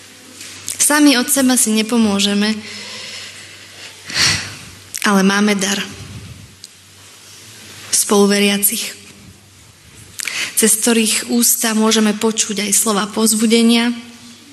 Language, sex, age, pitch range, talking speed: Slovak, female, 20-39, 195-235 Hz, 70 wpm